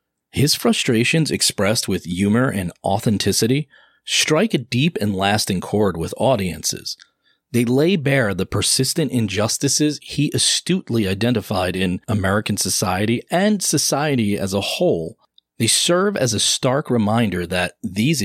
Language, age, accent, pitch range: English, 40-59, American, 100-140 Hz